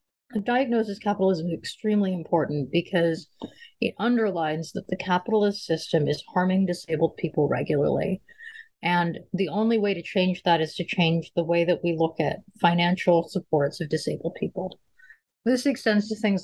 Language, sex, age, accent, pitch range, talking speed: English, female, 30-49, American, 160-200 Hz, 155 wpm